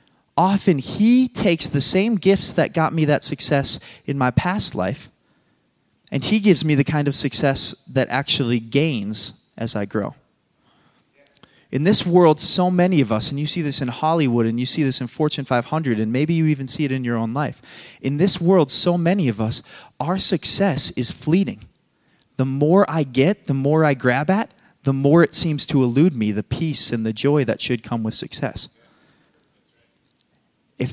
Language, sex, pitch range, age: English, male, 125-170 Hz, 30-49